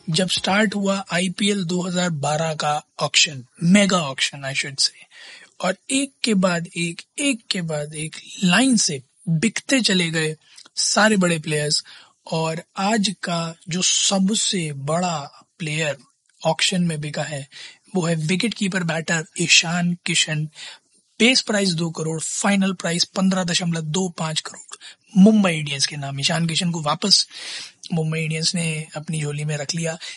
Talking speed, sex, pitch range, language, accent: 145 wpm, male, 160-205 Hz, Hindi, native